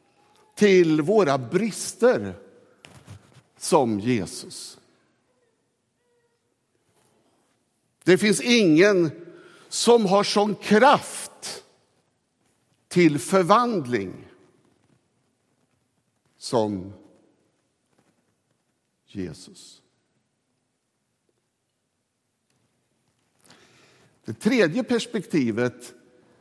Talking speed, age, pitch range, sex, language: 45 wpm, 60-79, 150-220 Hz, male, Swedish